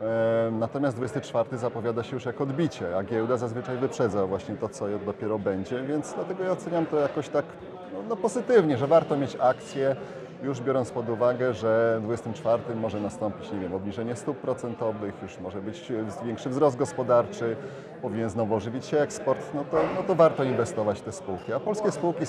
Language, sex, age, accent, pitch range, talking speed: Polish, male, 30-49, native, 115-140 Hz, 180 wpm